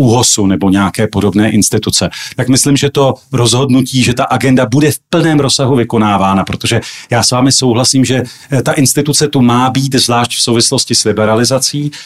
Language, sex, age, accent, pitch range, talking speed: Czech, male, 40-59, native, 115-130 Hz, 165 wpm